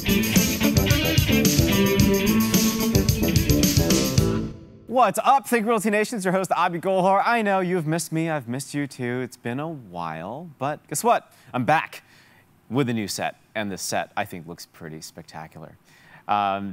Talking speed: 145 wpm